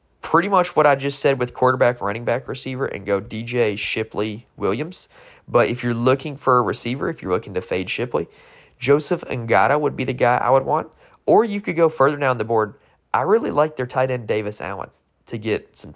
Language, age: English, 20-39